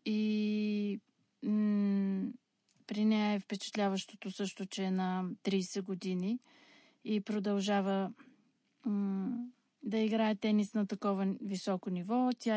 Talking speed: 110 wpm